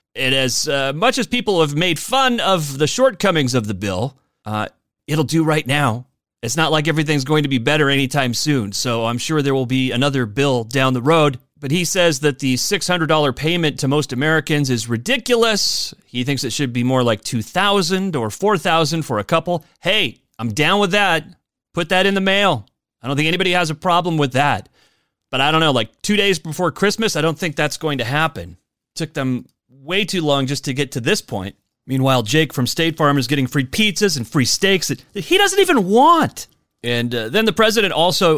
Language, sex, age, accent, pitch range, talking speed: English, male, 30-49, American, 130-180 Hz, 215 wpm